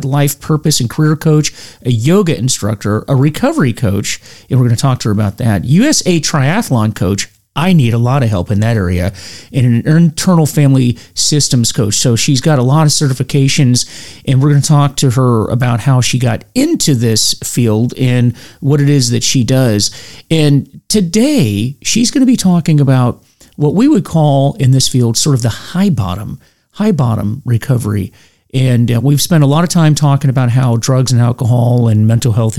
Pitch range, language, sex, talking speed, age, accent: 115-150 Hz, English, male, 190 wpm, 40-59, American